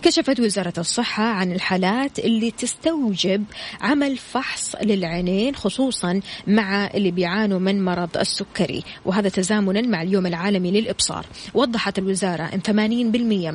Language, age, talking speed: Arabic, 20-39, 120 wpm